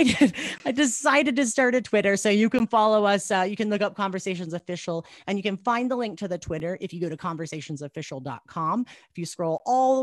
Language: English